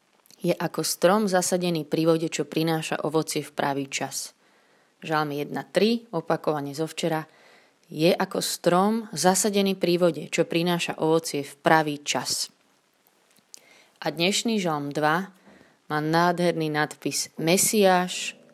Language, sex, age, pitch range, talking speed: Slovak, female, 20-39, 150-175 Hz, 120 wpm